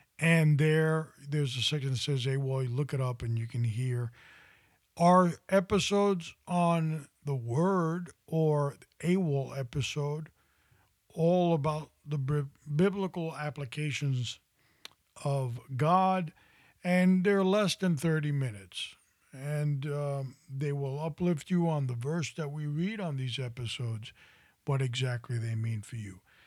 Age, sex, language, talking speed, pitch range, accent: 50-69, male, English, 130 wpm, 130-165 Hz, American